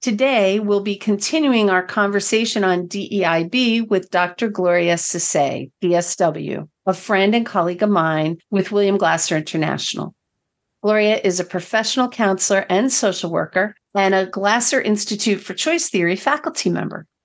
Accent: American